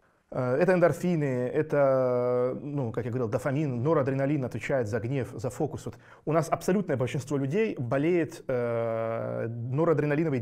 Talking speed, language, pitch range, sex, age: 130 wpm, Russian, 130-170 Hz, male, 20-39